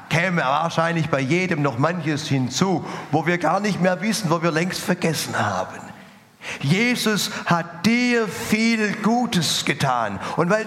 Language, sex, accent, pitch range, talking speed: German, male, German, 135-180 Hz, 145 wpm